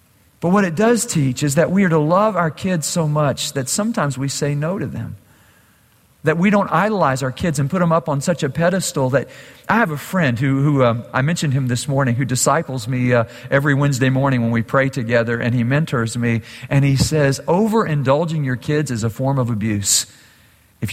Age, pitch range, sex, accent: 50-69, 135-180 Hz, male, American